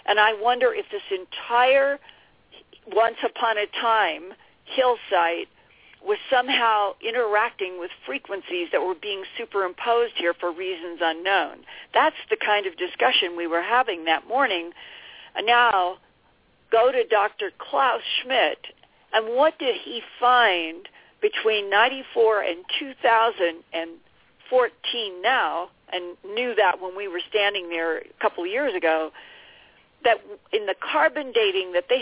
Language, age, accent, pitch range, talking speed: English, 50-69, American, 175-255 Hz, 125 wpm